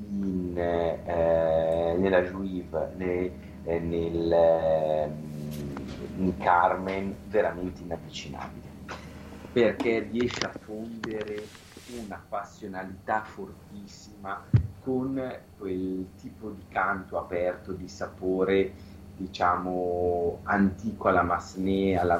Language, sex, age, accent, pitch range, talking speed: Italian, male, 40-59, native, 90-110 Hz, 80 wpm